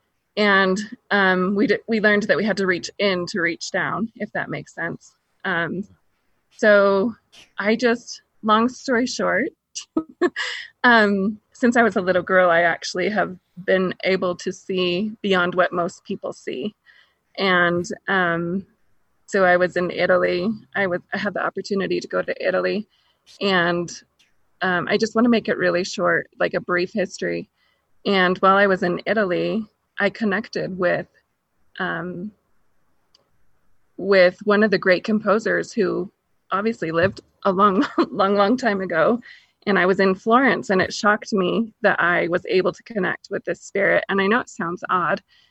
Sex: female